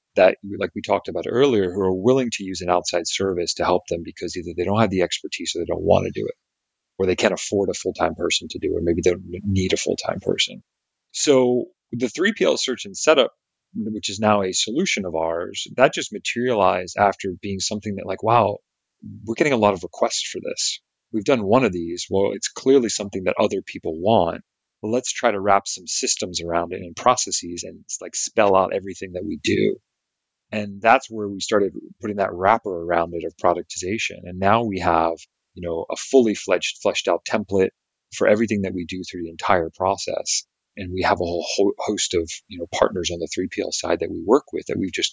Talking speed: 220 wpm